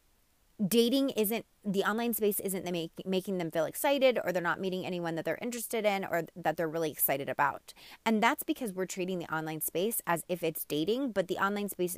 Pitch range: 170-230 Hz